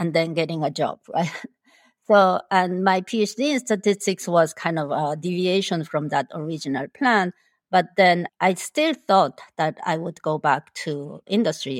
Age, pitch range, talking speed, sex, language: 50-69, 160-205 Hz, 170 wpm, female, English